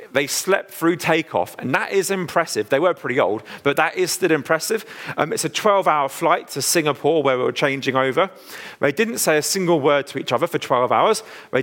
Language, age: English, 40-59